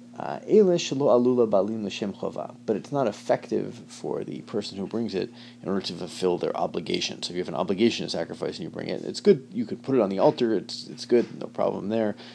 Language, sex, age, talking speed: English, male, 30-49, 215 wpm